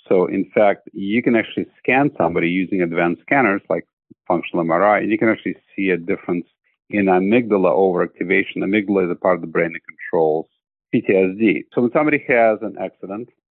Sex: male